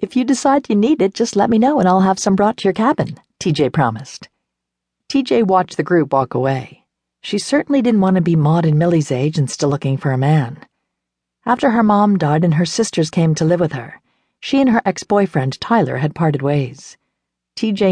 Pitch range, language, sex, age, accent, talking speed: 140-200 Hz, English, female, 50-69, American, 210 wpm